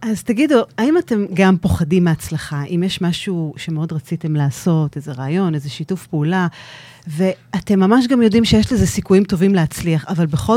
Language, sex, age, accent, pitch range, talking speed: Hebrew, female, 30-49, native, 160-210 Hz, 165 wpm